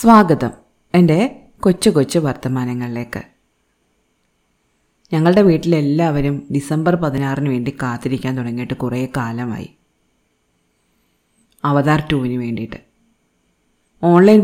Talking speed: 75 wpm